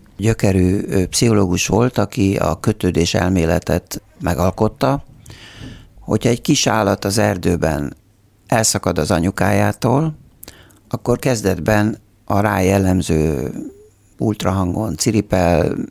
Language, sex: Hungarian, male